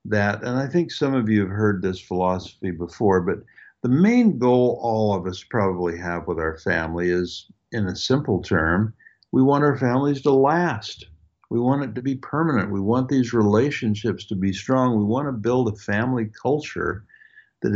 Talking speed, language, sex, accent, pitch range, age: 190 wpm, English, male, American, 95-130 Hz, 60-79